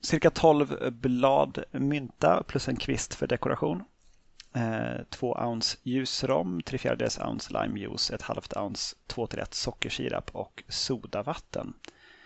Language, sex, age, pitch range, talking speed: Swedish, male, 30-49, 115-135 Hz, 115 wpm